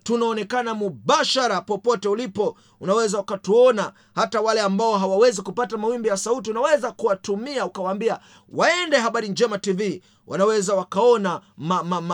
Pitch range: 205-255 Hz